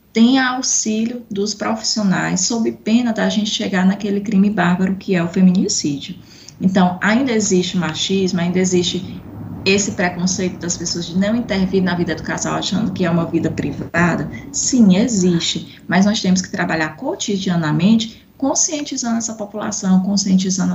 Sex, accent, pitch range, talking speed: female, Brazilian, 175-215 Hz, 150 wpm